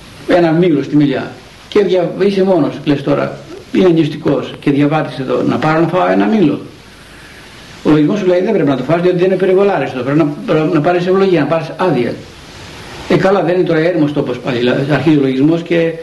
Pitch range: 135-165 Hz